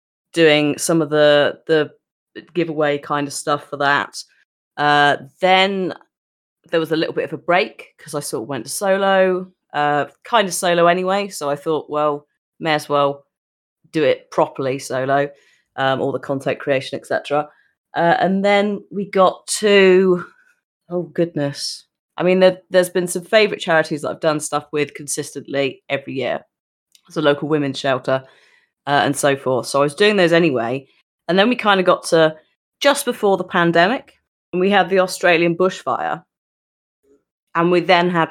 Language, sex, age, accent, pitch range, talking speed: English, female, 30-49, British, 145-185 Hz, 170 wpm